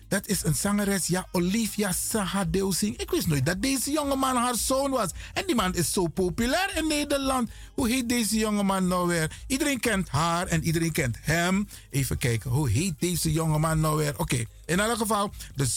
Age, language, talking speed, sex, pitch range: 50-69, Dutch, 190 wpm, male, 160-220 Hz